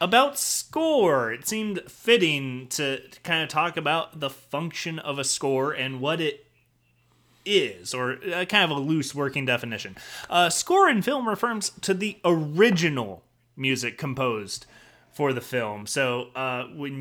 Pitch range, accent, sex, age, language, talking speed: 115-165 Hz, American, male, 20-39, English, 155 wpm